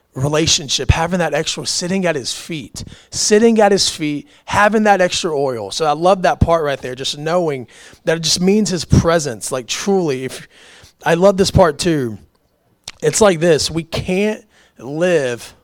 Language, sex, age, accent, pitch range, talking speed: English, male, 30-49, American, 145-195 Hz, 170 wpm